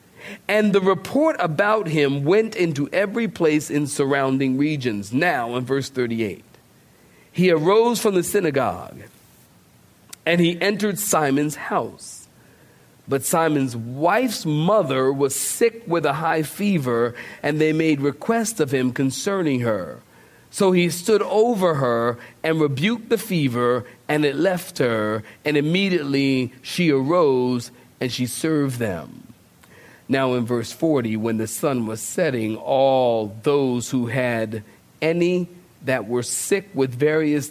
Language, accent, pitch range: English, American, 125-175 Hz